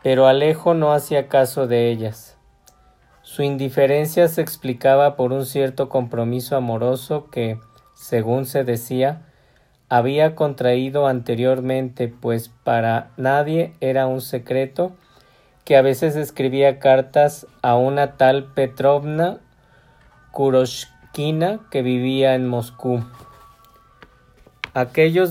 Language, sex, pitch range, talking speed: Spanish, male, 120-140 Hz, 105 wpm